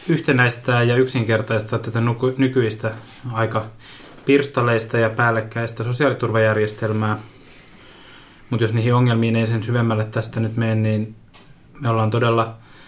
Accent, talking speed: native, 110 wpm